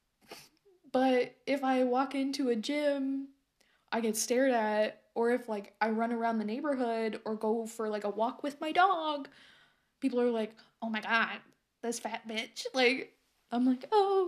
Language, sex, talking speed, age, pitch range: English, female, 170 wpm, 20-39, 225-275 Hz